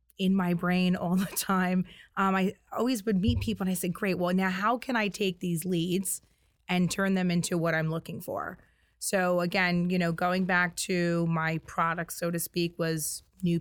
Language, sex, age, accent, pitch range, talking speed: English, female, 20-39, American, 170-190 Hz, 205 wpm